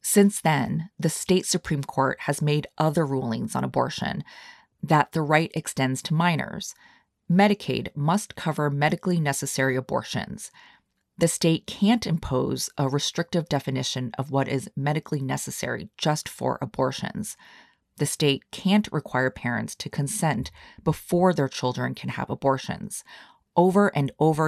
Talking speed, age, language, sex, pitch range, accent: 135 wpm, 30-49, English, female, 130-170 Hz, American